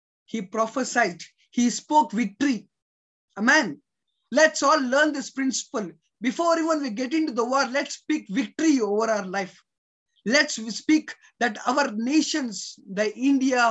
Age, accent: 20-39, Indian